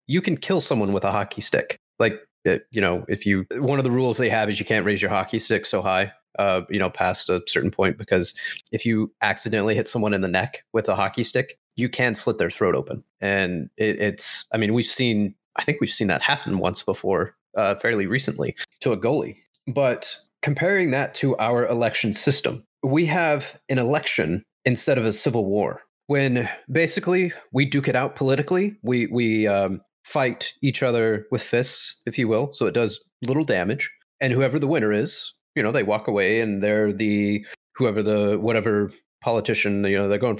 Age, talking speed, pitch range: 30-49, 200 wpm, 105-130 Hz